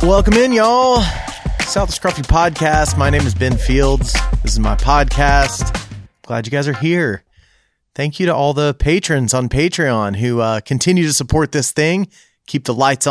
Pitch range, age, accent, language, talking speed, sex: 110-145 Hz, 30-49, American, English, 180 wpm, male